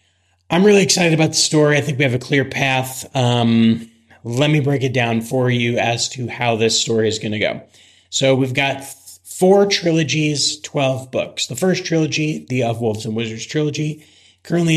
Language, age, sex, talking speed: English, 30-49, male, 190 wpm